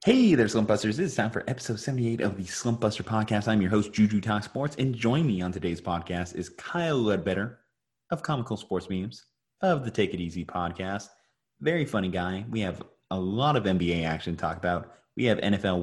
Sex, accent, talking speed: male, American, 210 wpm